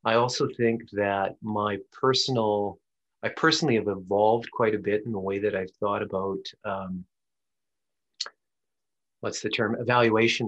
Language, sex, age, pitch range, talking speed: English, male, 30-49, 105-120 Hz, 145 wpm